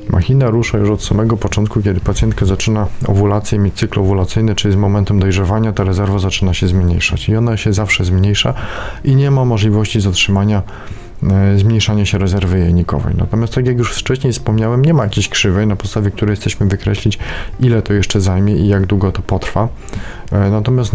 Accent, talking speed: native, 180 wpm